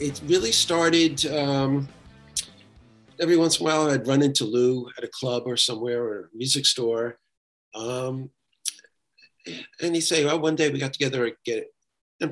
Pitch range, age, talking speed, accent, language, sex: 115-155 Hz, 40-59, 170 wpm, American, English, male